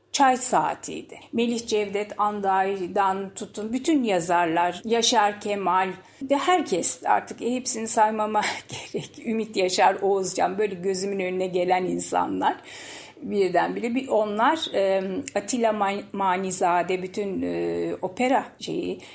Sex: female